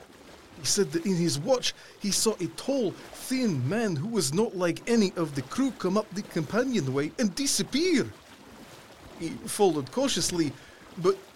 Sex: male